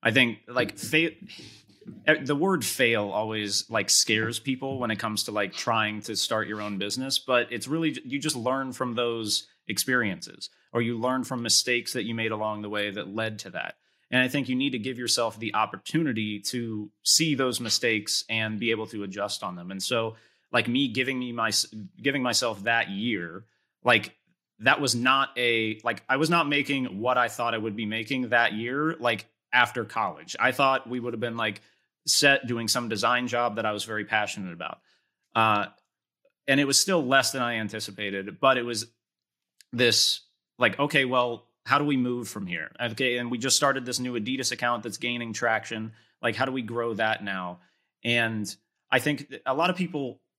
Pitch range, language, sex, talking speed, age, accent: 110-130 Hz, English, male, 195 wpm, 30-49, American